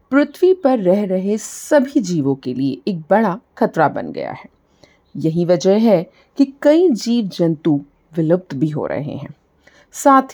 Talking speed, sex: 155 wpm, female